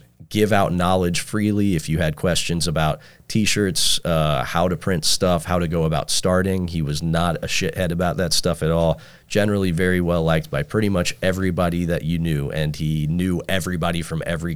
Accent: American